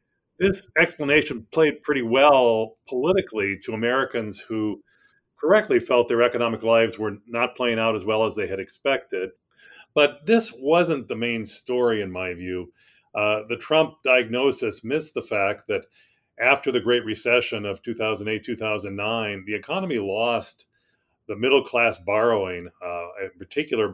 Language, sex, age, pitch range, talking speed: English, male, 40-59, 105-145 Hz, 145 wpm